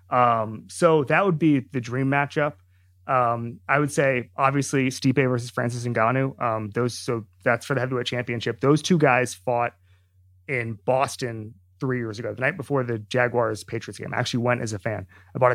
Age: 30-49